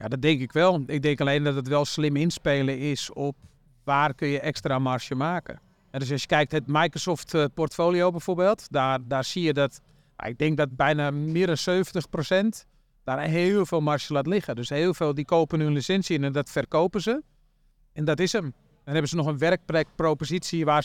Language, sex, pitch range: Dutch, male, 150-175 Hz